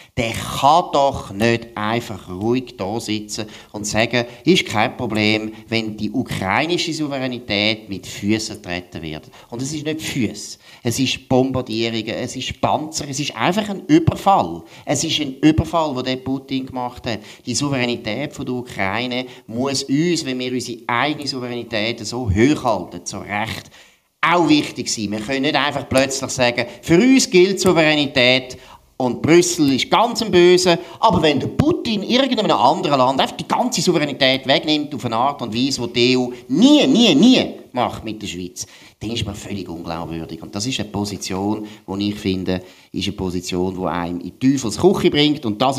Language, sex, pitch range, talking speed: German, male, 105-145 Hz, 175 wpm